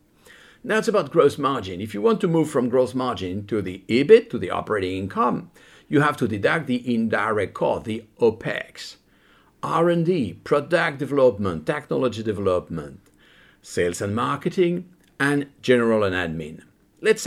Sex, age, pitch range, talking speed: male, 50-69, 115-170 Hz, 145 wpm